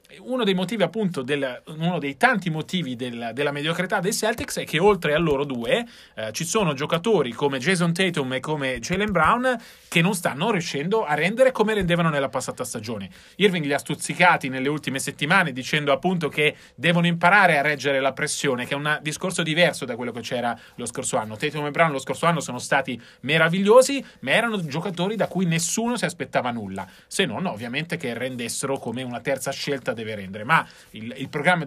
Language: Italian